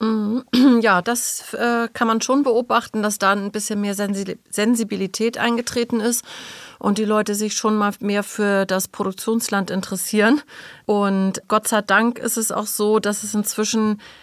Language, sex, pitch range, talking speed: German, female, 185-220 Hz, 150 wpm